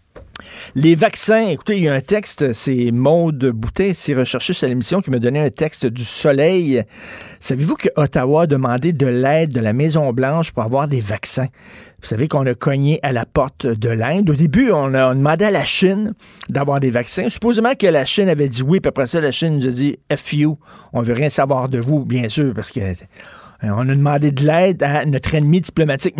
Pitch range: 125-160 Hz